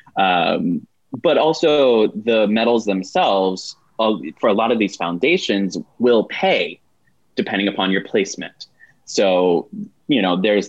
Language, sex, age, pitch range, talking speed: English, male, 20-39, 100-145 Hz, 130 wpm